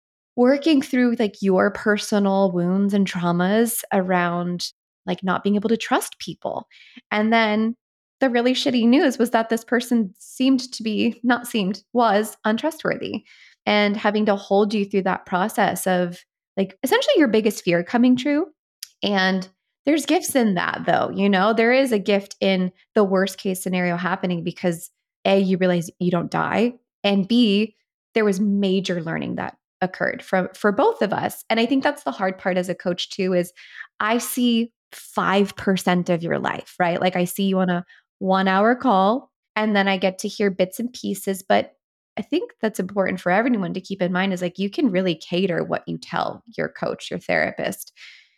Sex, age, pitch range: female, 20-39, 185-235 Hz